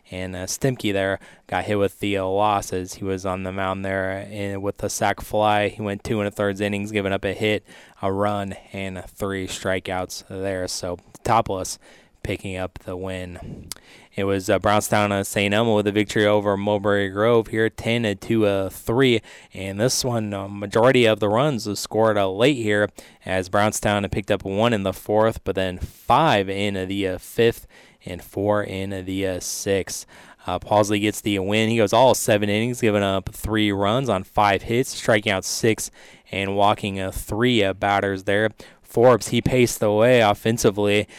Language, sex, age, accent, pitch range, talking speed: English, male, 20-39, American, 95-110 Hz, 185 wpm